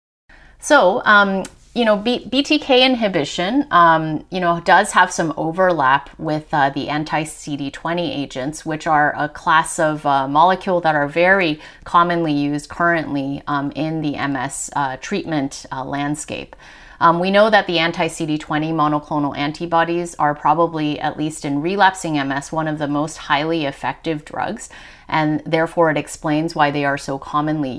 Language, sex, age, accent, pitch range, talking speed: English, female, 30-49, American, 145-170 Hz, 150 wpm